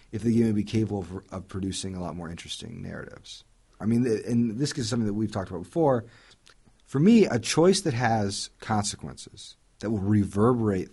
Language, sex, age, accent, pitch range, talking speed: English, male, 40-59, American, 95-135 Hz, 190 wpm